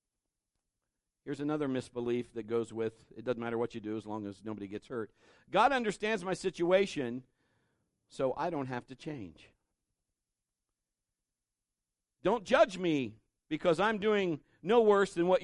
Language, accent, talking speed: English, American, 150 wpm